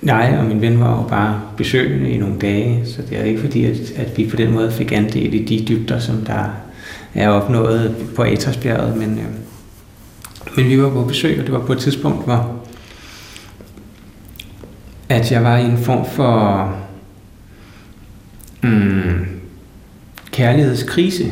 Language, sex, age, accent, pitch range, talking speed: Danish, male, 60-79, native, 105-120 Hz, 150 wpm